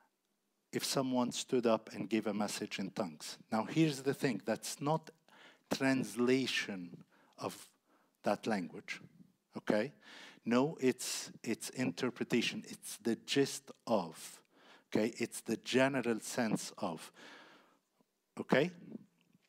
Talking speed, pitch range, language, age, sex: 110 wpm, 115-160 Hz, English, 50-69, male